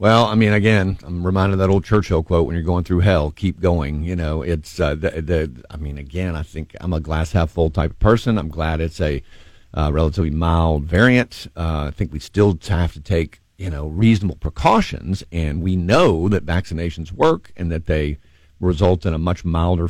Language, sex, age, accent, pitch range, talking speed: English, male, 50-69, American, 80-95 Hz, 210 wpm